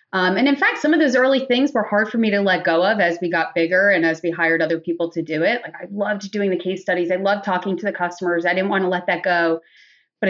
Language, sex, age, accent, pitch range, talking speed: English, female, 30-49, American, 165-200 Hz, 295 wpm